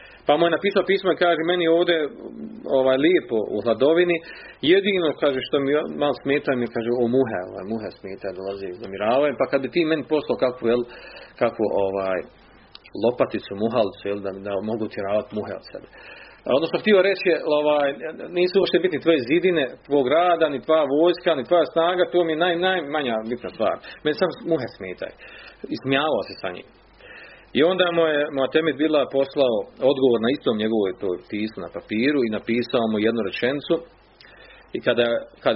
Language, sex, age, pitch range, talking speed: Croatian, male, 40-59, 115-165 Hz, 175 wpm